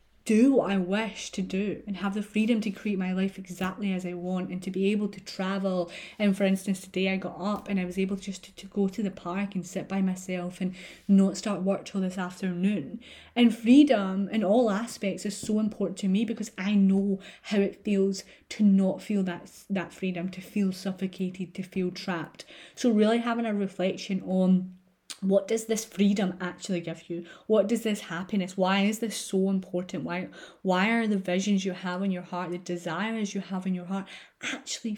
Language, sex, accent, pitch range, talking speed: English, female, British, 190-225 Hz, 210 wpm